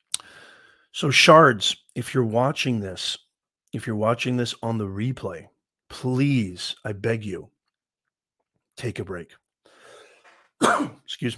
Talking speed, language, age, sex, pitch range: 110 wpm, English, 40-59, male, 105-125 Hz